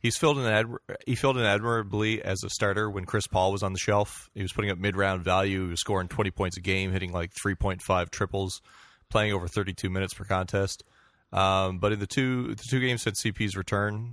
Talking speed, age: 215 wpm, 30-49